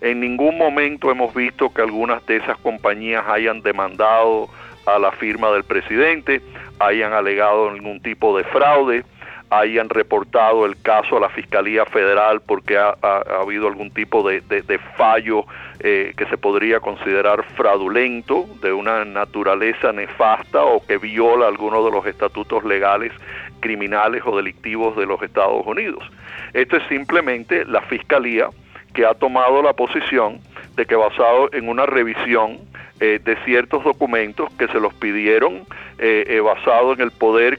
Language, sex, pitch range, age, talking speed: Spanish, male, 110-150 Hz, 50-69, 155 wpm